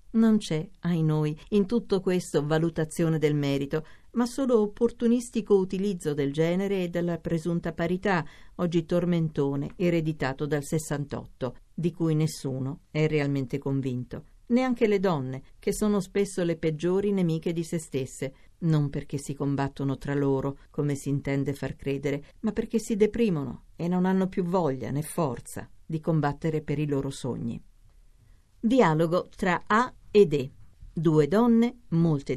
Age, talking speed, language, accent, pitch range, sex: 50-69, 145 wpm, Italian, native, 140-190 Hz, female